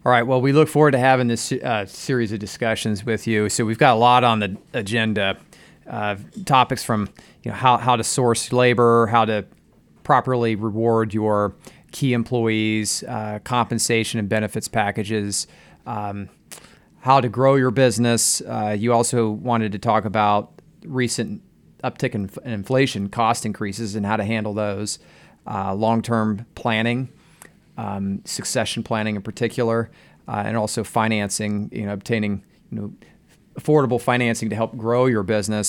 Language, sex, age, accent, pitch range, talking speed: English, male, 30-49, American, 110-125 Hz, 160 wpm